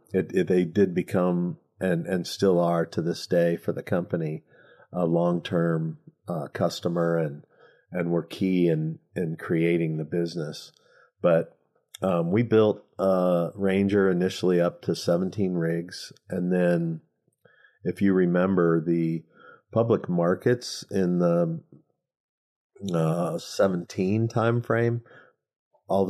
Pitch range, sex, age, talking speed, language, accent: 85-95 Hz, male, 40-59, 130 wpm, English, American